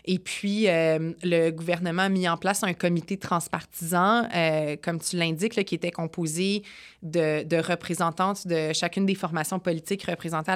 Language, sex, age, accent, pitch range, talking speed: French, female, 20-39, Canadian, 165-185 Hz, 165 wpm